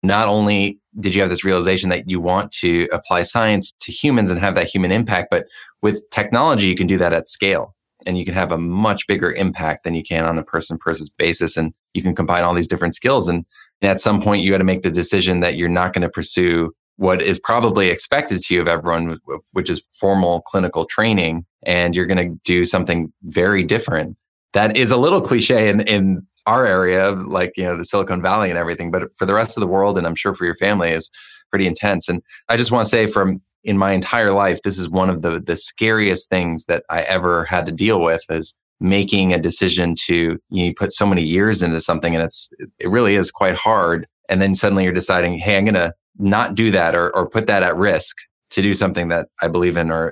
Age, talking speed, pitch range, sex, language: 20-39, 230 wpm, 85-95 Hz, male, English